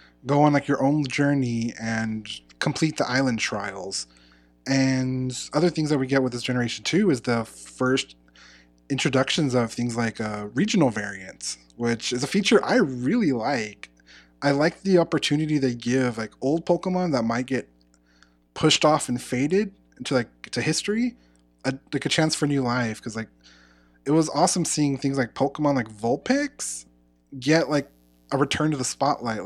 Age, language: 20-39, English